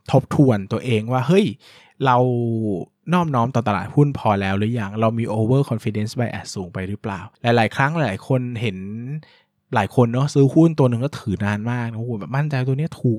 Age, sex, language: 20-39, male, Thai